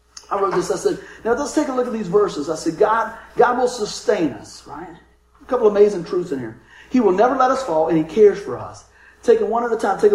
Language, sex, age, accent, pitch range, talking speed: English, male, 50-69, American, 145-235 Hz, 270 wpm